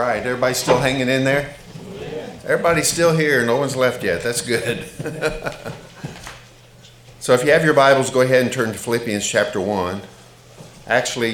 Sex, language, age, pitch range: male, English, 50-69, 100-120 Hz